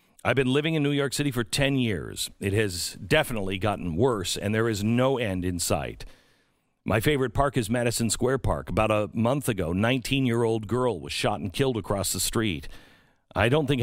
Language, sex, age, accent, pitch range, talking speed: English, male, 50-69, American, 100-130 Hz, 200 wpm